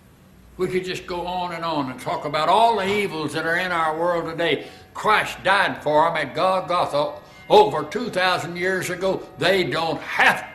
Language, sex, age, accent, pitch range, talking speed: English, male, 60-79, American, 120-175 Hz, 180 wpm